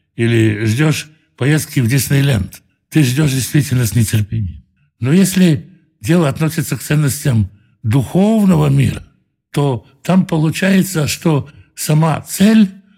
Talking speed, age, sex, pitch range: 110 wpm, 60-79, male, 120-165 Hz